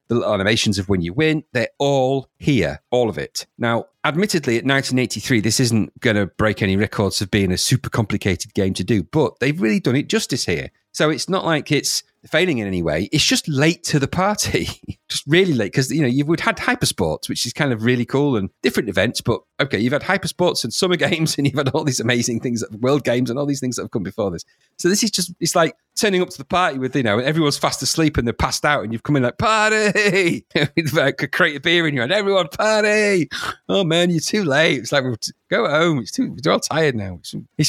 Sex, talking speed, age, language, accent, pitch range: male, 245 wpm, 40-59, English, British, 105-155 Hz